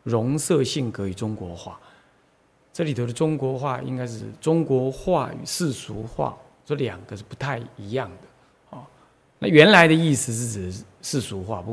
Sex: male